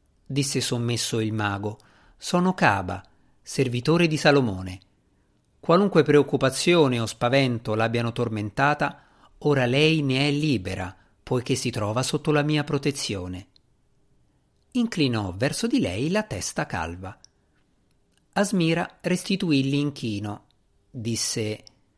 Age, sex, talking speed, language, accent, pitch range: 50-69, male, 105 wpm, Italian, native, 110-150 Hz